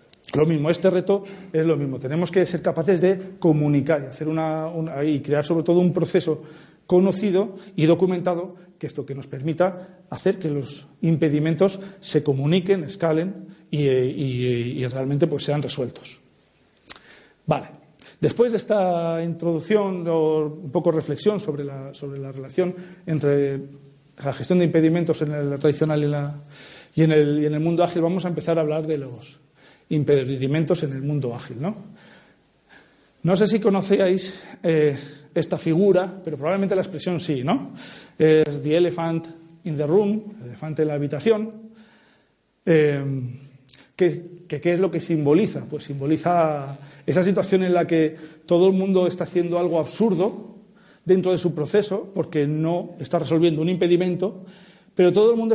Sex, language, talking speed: male, English, 165 wpm